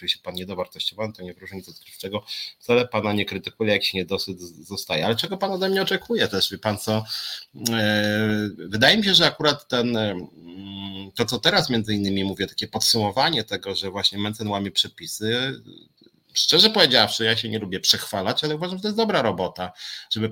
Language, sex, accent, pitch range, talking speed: Polish, male, native, 95-125 Hz, 190 wpm